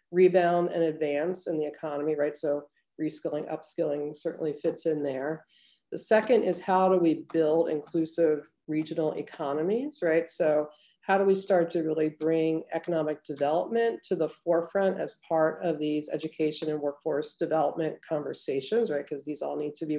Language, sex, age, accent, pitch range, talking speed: English, female, 40-59, American, 155-185 Hz, 160 wpm